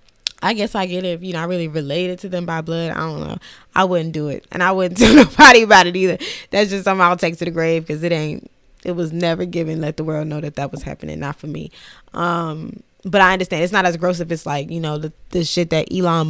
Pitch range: 165-185 Hz